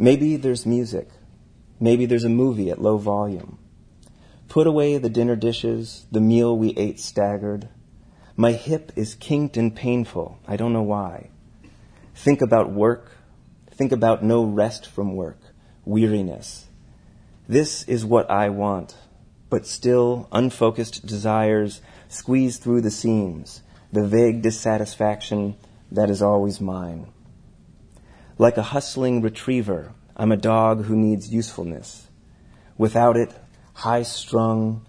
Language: English